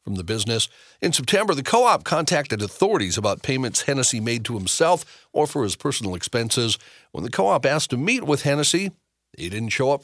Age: 50-69